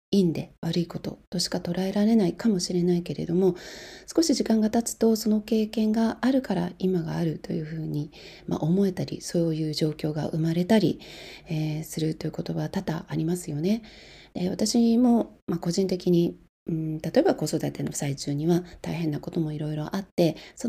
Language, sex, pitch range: Japanese, female, 165-215 Hz